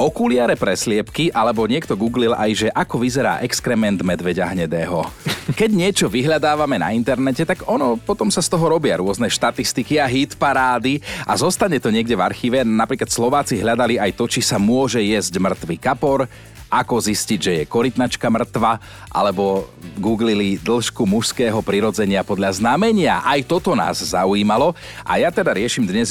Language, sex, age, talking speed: Slovak, male, 40-59, 155 wpm